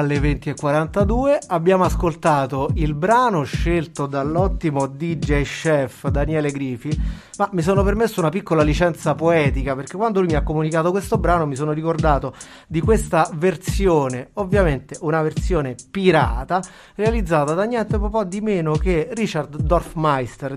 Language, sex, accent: Italian, male, native